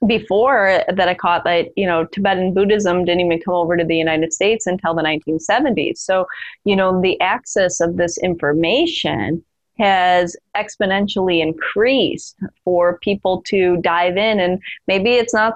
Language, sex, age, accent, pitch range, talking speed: English, female, 20-39, American, 170-195 Hz, 160 wpm